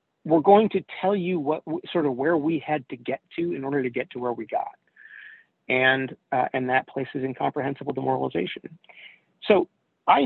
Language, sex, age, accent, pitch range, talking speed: English, male, 30-49, American, 130-170 Hz, 180 wpm